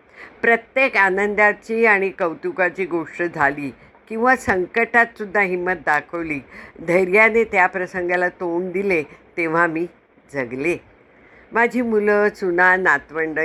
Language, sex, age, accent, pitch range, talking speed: Hindi, female, 60-79, native, 160-205 Hz, 85 wpm